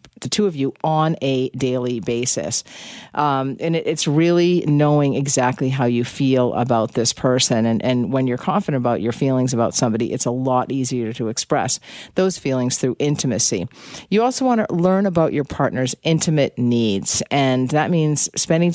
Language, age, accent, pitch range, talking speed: English, 40-59, American, 130-175 Hz, 175 wpm